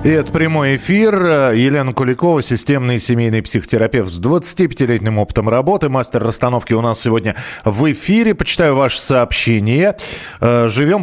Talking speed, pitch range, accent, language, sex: 130 wpm, 105-145 Hz, native, Russian, male